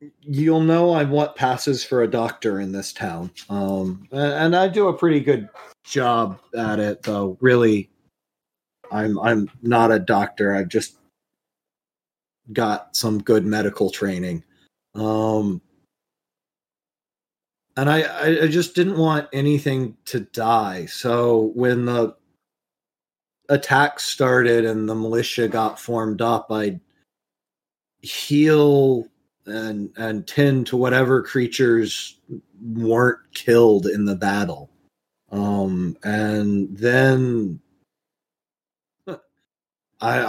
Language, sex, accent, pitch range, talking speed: English, male, American, 105-130 Hz, 110 wpm